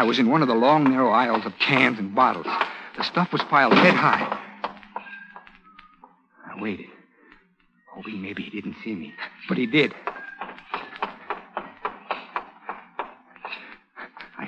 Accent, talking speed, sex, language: American, 130 wpm, male, English